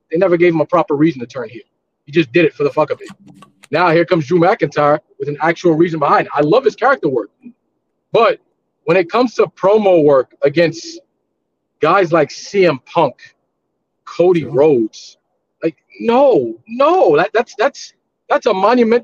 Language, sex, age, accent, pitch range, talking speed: English, male, 40-59, American, 170-260 Hz, 185 wpm